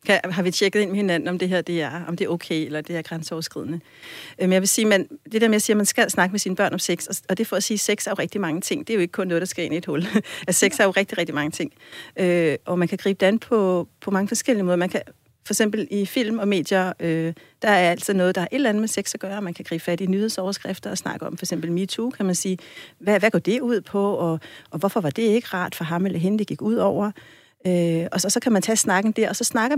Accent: native